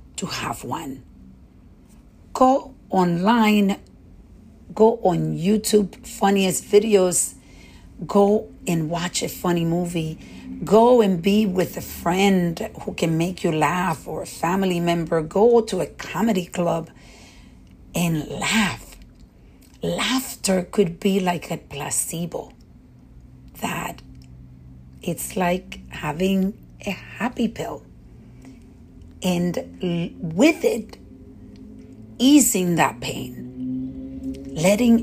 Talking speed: 100 wpm